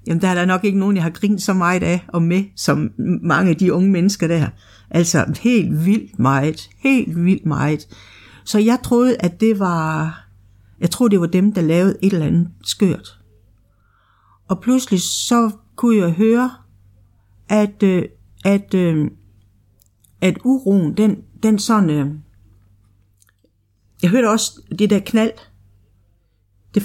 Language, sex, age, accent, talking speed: Danish, female, 60-79, native, 145 wpm